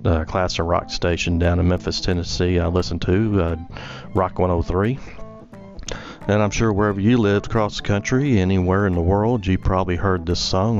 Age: 40-59